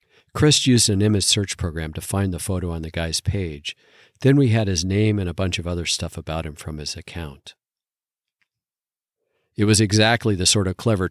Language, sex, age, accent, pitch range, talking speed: English, male, 50-69, American, 90-115 Hz, 200 wpm